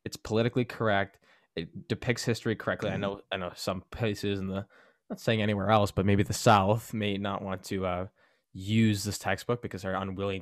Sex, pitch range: male, 100-120 Hz